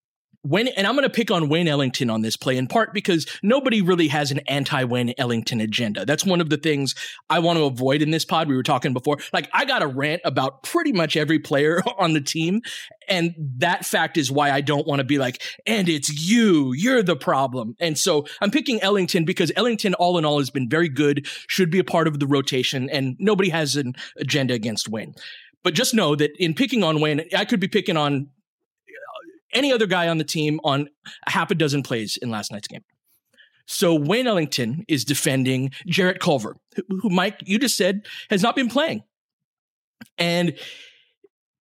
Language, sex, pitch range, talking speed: English, male, 145-195 Hz, 200 wpm